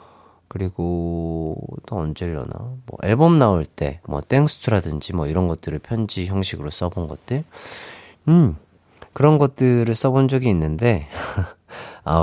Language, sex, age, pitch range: Korean, male, 40-59, 90-145 Hz